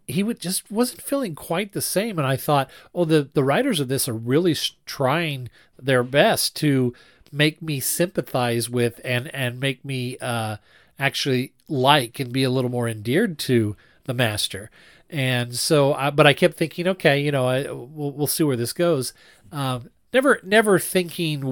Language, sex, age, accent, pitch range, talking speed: English, male, 40-59, American, 120-155 Hz, 175 wpm